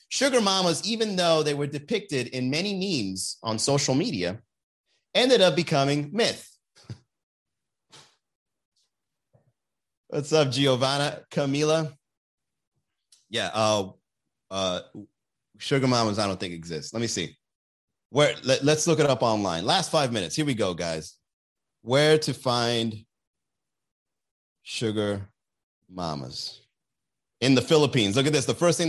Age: 30-49